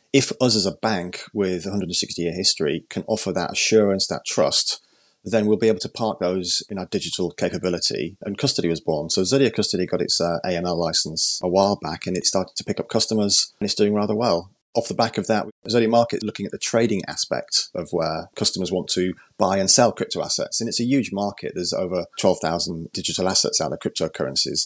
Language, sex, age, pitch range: English, male, 30-49, 90-110 Hz